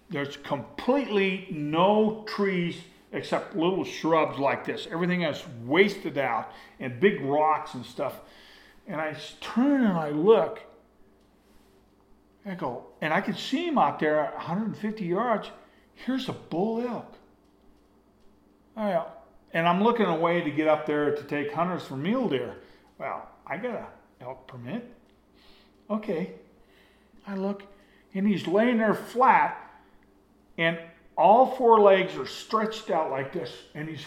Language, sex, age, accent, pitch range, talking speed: English, male, 50-69, American, 155-220 Hz, 145 wpm